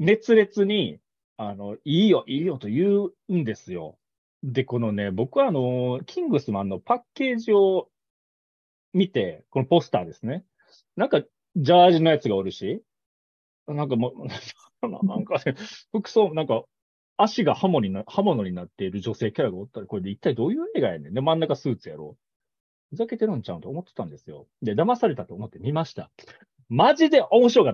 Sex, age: male, 40-59